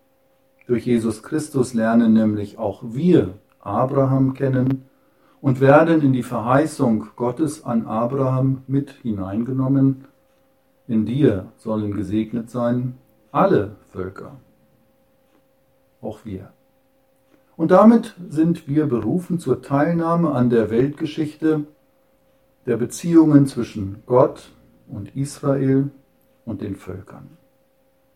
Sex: male